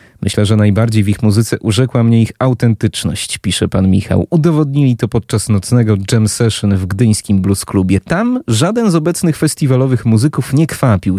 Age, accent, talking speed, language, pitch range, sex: 30-49, native, 165 wpm, Polish, 100-120 Hz, male